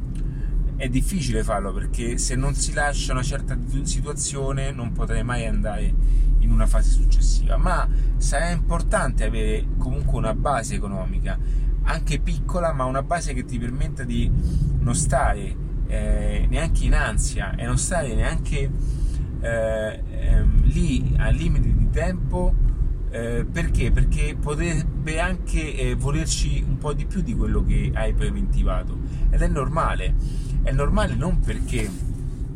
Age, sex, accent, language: 30-49, male, native, Italian